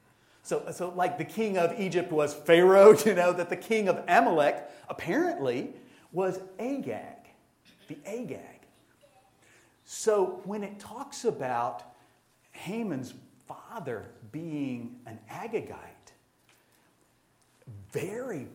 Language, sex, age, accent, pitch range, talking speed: English, male, 40-59, American, 140-190 Hz, 105 wpm